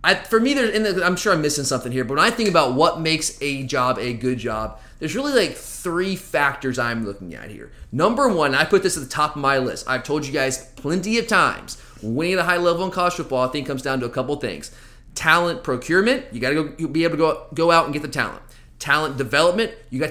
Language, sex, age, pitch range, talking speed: English, male, 30-49, 130-165 Hz, 265 wpm